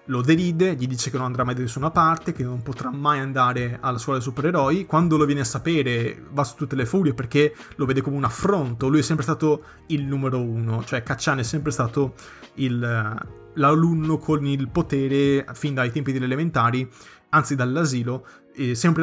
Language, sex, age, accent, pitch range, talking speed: Italian, male, 20-39, native, 125-155 Hz, 195 wpm